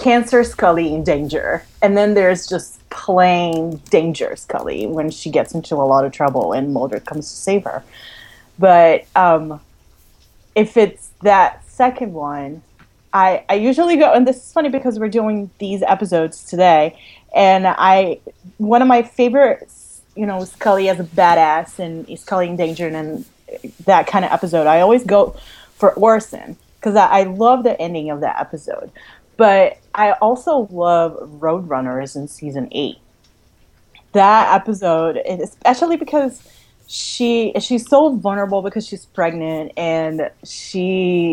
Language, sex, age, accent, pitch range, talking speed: English, female, 30-49, American, 155-215 Hz, 150 wpm